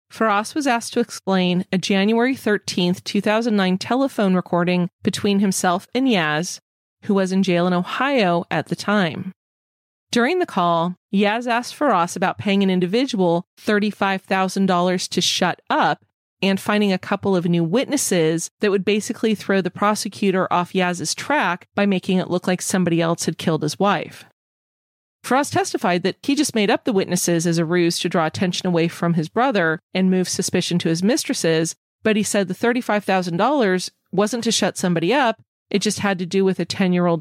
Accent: American